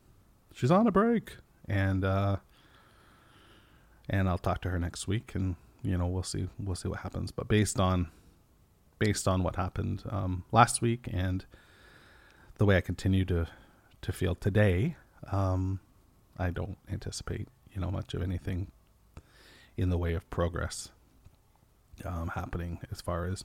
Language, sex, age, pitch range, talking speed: English, male, 30-49, 90-105 Hz, 155 wpm